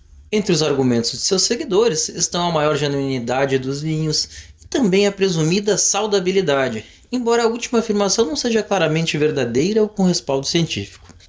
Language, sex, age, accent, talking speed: Portuguese, male, 20-39, Brazilian, 155 wpm